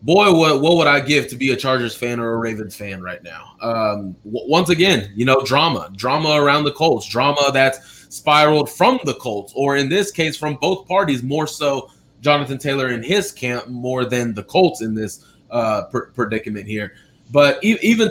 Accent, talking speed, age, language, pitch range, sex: American, 200 wpm, 20-39, English, 125-175 Hz, male